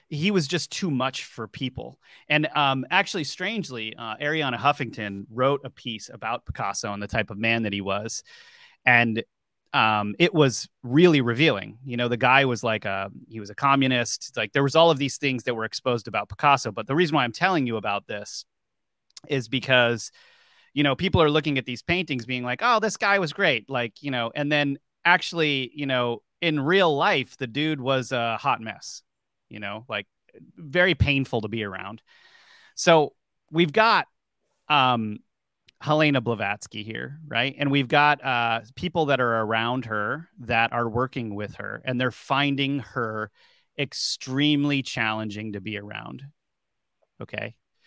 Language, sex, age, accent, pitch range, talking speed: English, male, 30-49, American, 115-150 Hz, 175 wpm